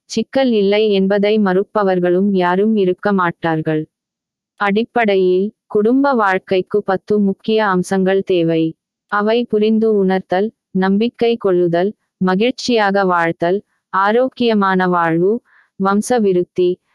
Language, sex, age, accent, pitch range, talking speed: Tamil, female, 20-39, native, 185-215 Hz, 85 wpm